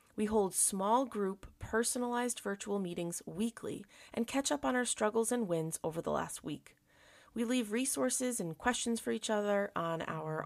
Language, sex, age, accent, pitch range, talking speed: English, female, 30-49, American, 185-240 Hz, 170 wpm